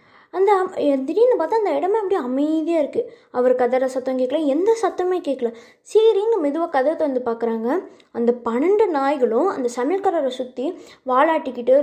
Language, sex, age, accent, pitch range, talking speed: Tamil, female, 20-39, native, 240-335 Hz, 140 wpm